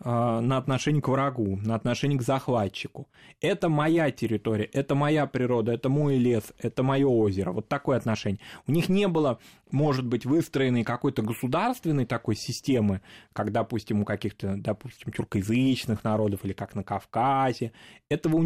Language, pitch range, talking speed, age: Russian, 110-145 Hz, 155 wpm, 20-39